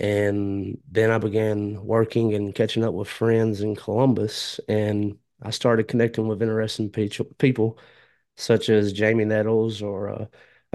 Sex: male